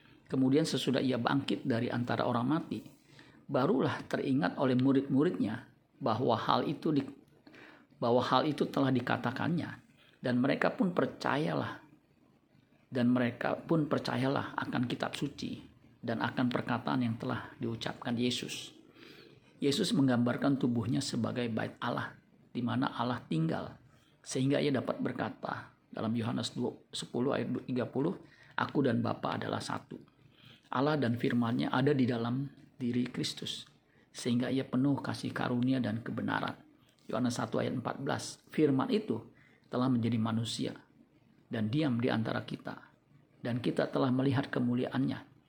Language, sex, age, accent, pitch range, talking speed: Indonesian, male, 50-69, native, 120-140 Hz, 130 wpm